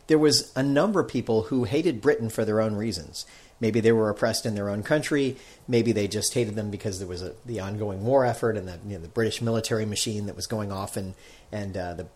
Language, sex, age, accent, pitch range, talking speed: English, male, 40-59, American, 110-135 Hz, 230 wpm